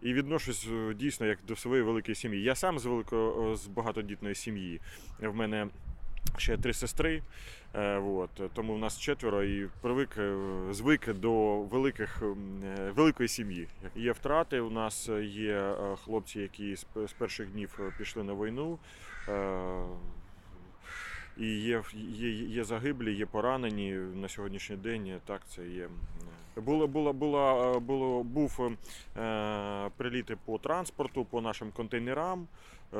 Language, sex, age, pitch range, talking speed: Ukrainian, male, 30-49, 100-120 Hz, 125 wpm